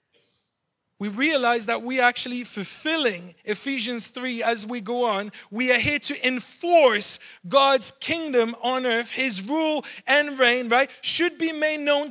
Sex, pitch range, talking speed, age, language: male, 240-300 Hz, 150 wpm, 30-49, English